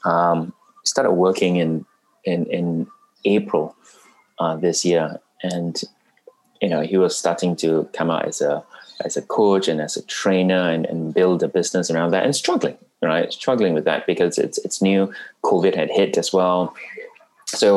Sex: male